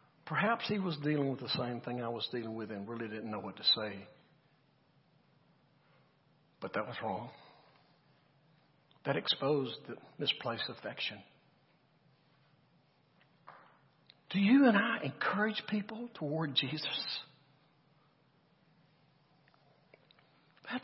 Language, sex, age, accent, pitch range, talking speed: English, male, 60-79, American, 150-235 Hz, 110 wpm